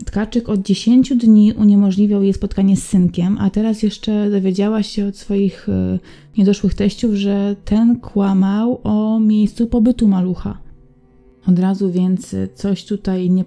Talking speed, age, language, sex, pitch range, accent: 140 wpm, 20-39, Polish, female, 185-205 Hz, native